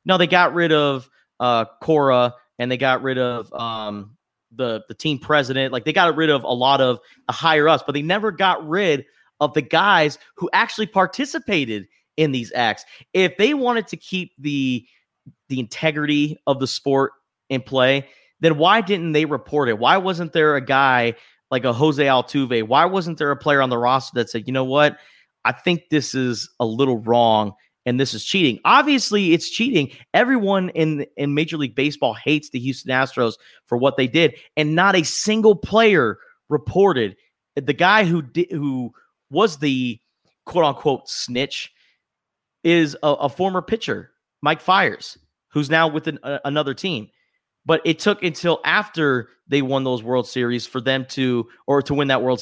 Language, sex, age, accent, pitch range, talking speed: English, male, 30-49, American, 125-165 Hz, 185 wpm